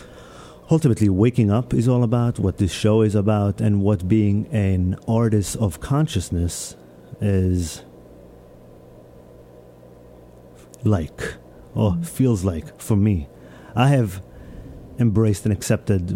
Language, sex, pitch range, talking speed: English, male, 90-120 Hz, 110 wpm